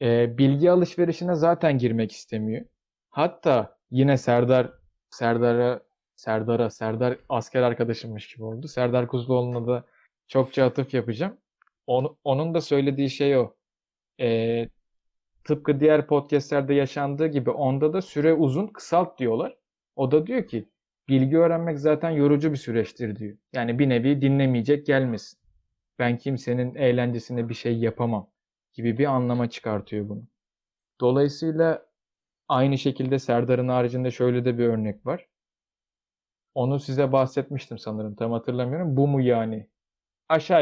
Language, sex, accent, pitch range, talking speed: Turkish, male, native, 120-150 Hz, 125 wpm